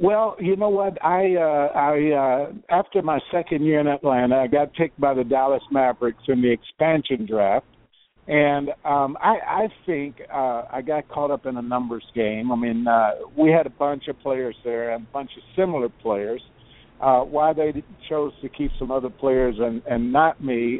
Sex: male